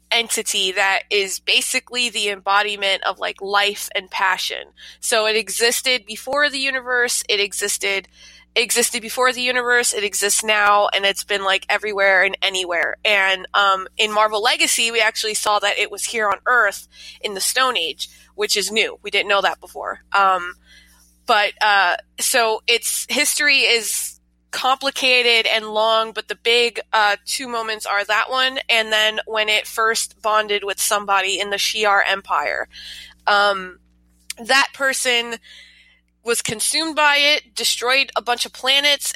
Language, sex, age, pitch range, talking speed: English, female, 20-39, 200-240 Hz, 155 wpm